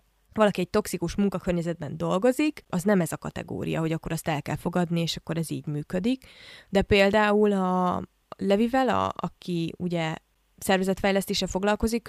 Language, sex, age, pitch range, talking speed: Hungarian, female, 20-39, 170-220 Hz, 145 wpm